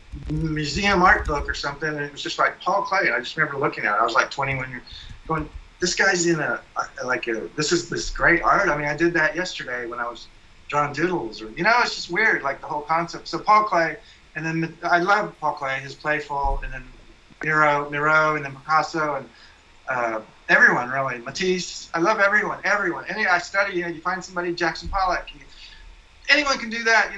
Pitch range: 140-175 Hz